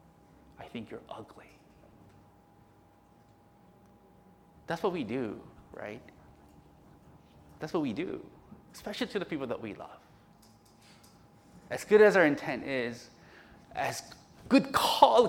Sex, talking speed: male, 115 wpm